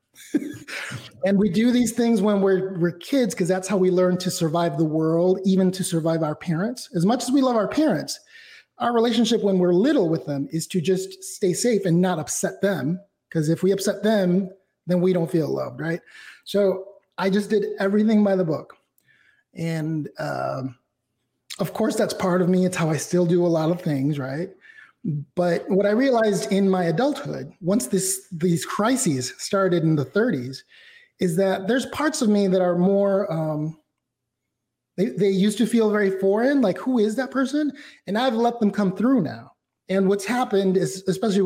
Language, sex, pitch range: English, male, 165-210 Hz